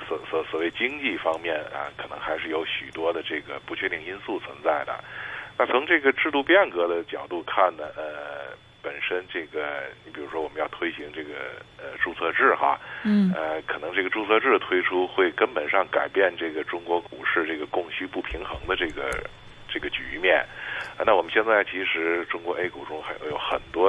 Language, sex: Chinese, male